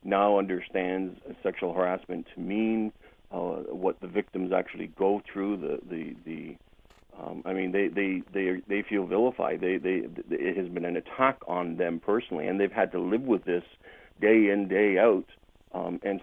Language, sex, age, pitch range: English, male, 50-69, 95-110 Hz